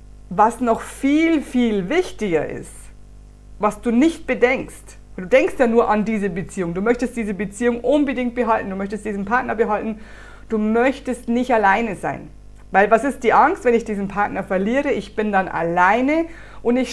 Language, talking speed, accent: German, 175 wpm, German